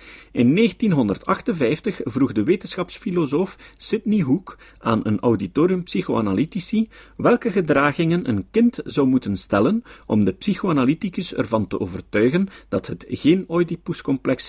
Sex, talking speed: male, 115 wpm